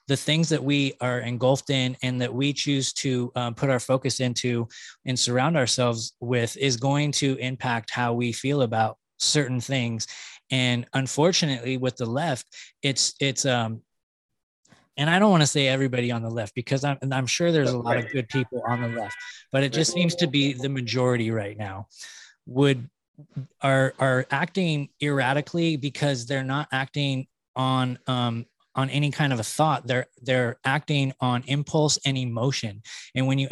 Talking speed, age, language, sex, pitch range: 180 wpm, 20-39, English, male, 120-140 Hz